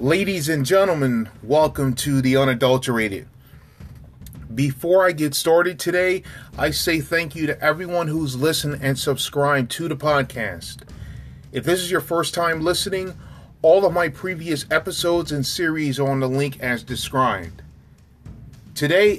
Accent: American